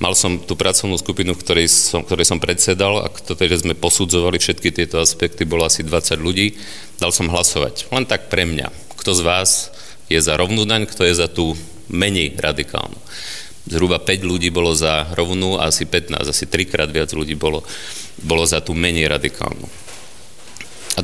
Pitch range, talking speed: 80-95 Hz, 175 wpm